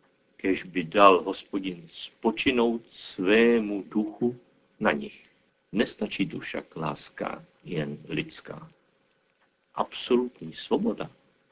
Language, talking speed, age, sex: Czech, 90 wpm, 50-69, male